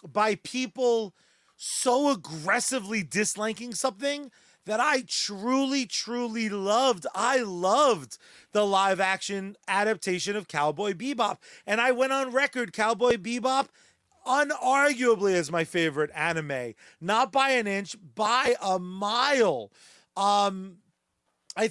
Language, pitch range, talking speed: English, 195-260 Hz, 115 wpm